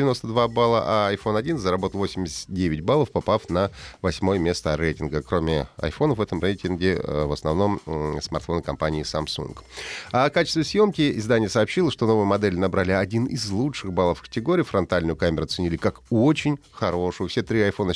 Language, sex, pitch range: Russian, male, 85-120 Hz